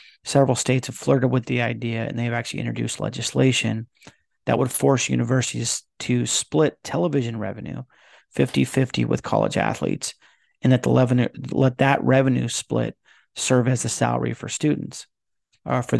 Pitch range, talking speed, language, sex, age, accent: 115-130 Hz, 155 wpm, English, male, 40-59, American